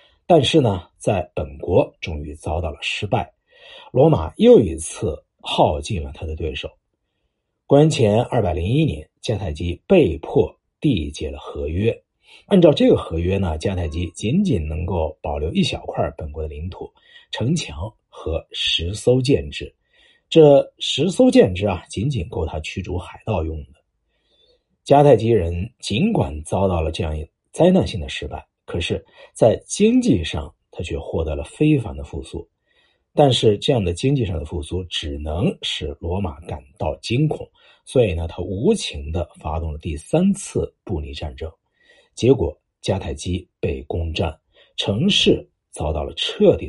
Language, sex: Chinese, male